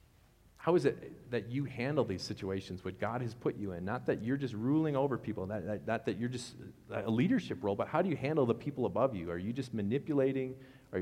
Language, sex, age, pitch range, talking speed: English, male, 40-59, 95-125 Hz, 230 wpm